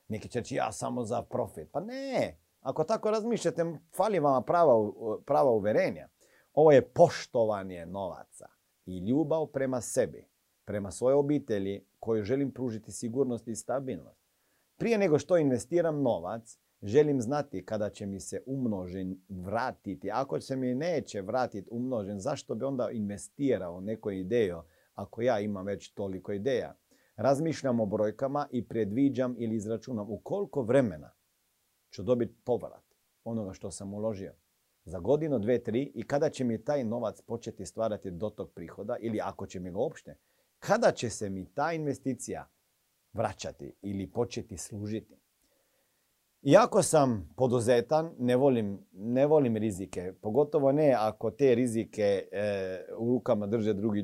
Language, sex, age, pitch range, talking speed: Croatian, male, 40-59, 100-135 Hz, 145 wpm